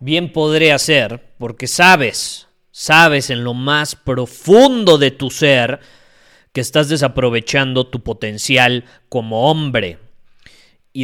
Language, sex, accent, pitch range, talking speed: Spanish, male, Mexican, 115-155 Hz, 115 wpm